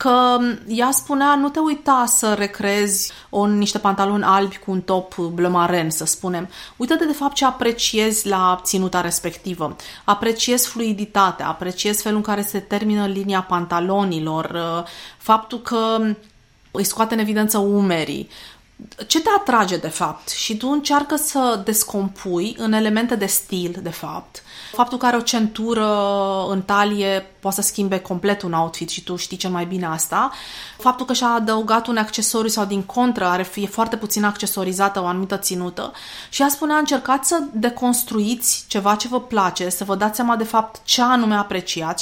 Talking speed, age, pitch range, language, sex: 165 wpm, 30-49, 185-235 Hz, Romanian, female